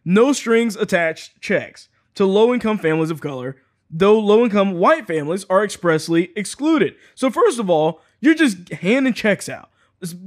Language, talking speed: English, 165 wpm